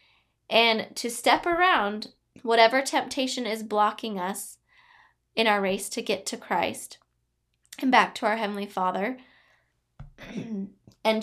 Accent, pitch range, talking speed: American, 205-265 Hz, 125 wpm